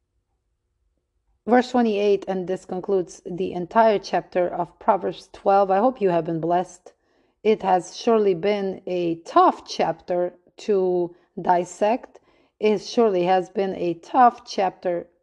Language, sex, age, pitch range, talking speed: English, female, 30-49, 175-200 Hz, 130 wpm